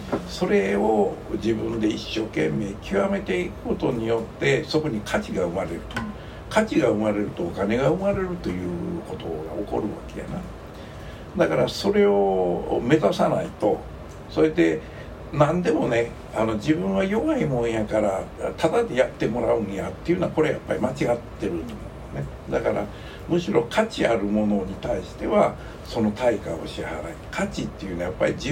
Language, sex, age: Japanese, male, 60-79